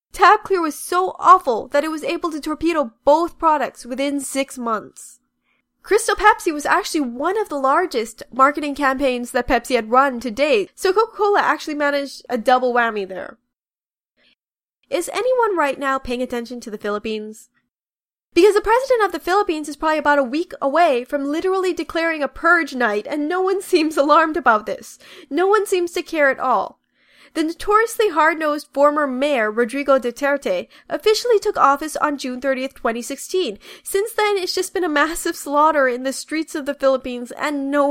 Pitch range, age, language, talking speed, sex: 265-355 Hz, 10-29, English, 175 wpm, female